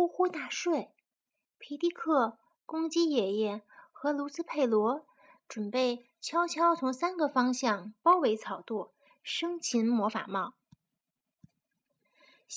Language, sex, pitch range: Chinese, female, 230-330 Hz